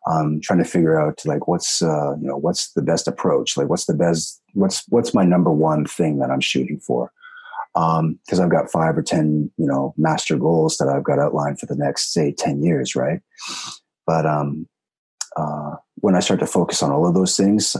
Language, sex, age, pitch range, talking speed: English, male, 30-49, 75-85 Hz, 210 wpm